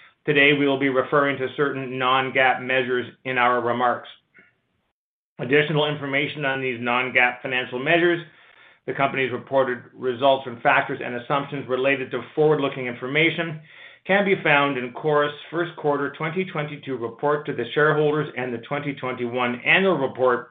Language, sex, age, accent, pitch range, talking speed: English, male, 40-59, American, 130-160 Hz, 140 wpm